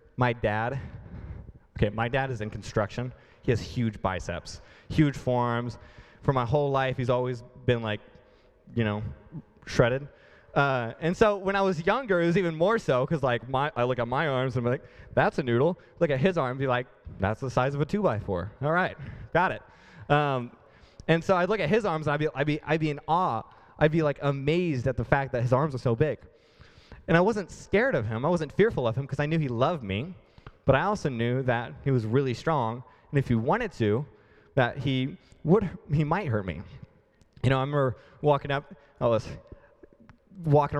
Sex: male